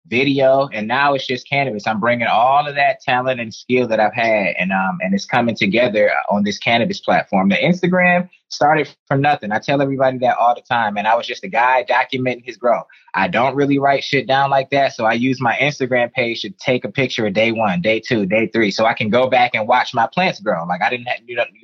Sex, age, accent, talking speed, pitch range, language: male, 20-39, American, 245 wpm, 120-150 Hz, English